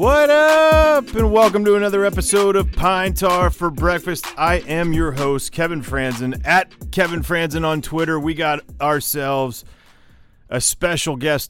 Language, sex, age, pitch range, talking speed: English, male, 30-49, 110-150 Hz, 150 wpm